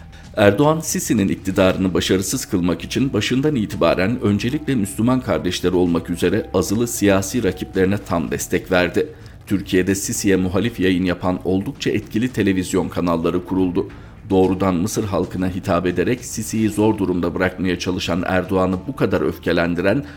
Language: Turkish